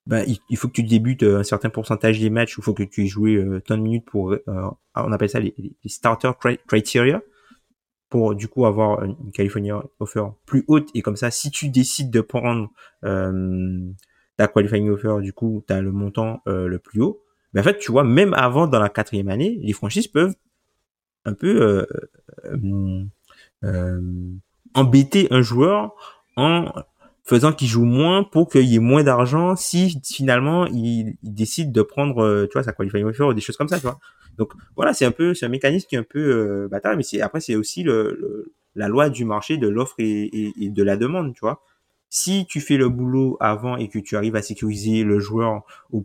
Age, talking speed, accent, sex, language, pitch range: 20-39, 210 wpm, French, male, French, 105-135 Hz